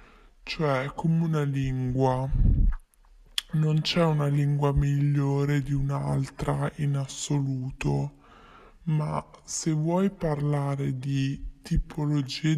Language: Italian